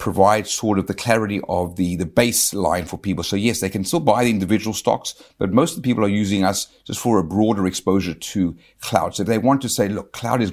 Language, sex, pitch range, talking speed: English, male, 95-110 Hz, 250 wpm